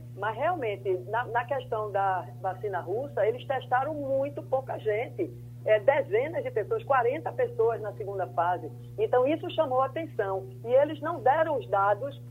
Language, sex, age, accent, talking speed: Portuguese, female, 40-59, Brazilian, 160 wpm